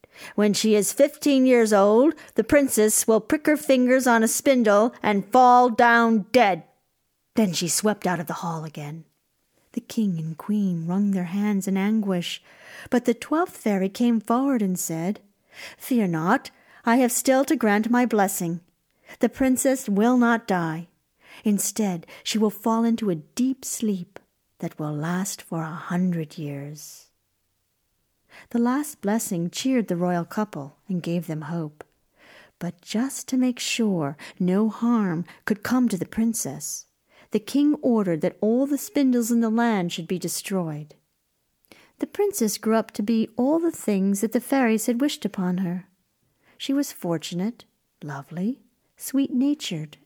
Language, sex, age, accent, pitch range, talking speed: English, female, 50-69, American, 180-245 Hz, 155 wpm